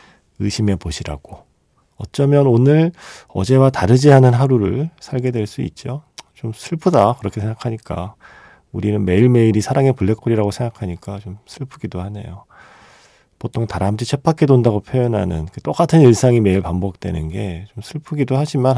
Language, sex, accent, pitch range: Korean, male, native, 95-135 Hz